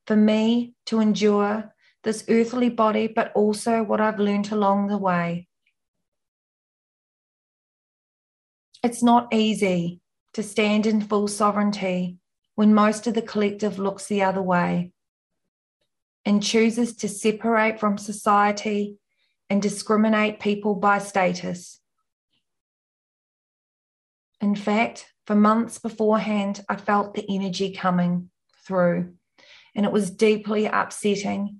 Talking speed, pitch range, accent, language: 110 wpm, 200-220 Hz, Australian, English